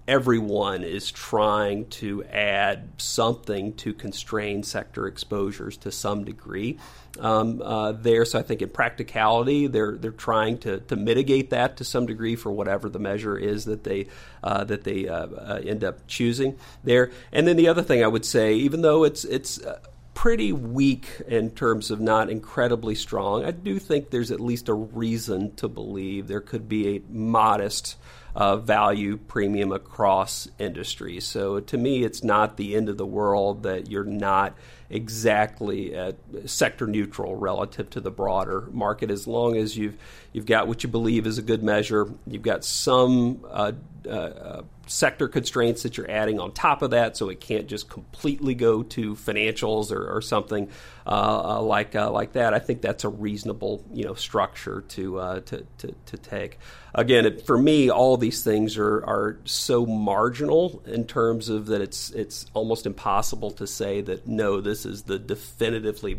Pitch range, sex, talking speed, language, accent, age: 100-120 Hz, male, 175 wpm, English, American, 50-69